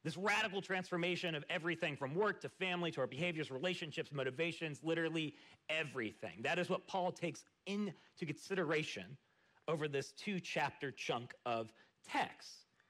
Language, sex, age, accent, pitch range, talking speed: English, male, 40-59, American, 140-195 Hz, 135 wpm